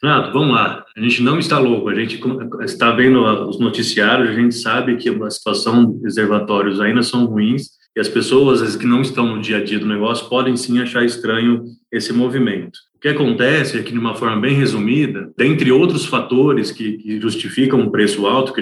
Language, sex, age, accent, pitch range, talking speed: Portuguese, male, 20-39, Brazilian, 115-135 Hz, 205 wpm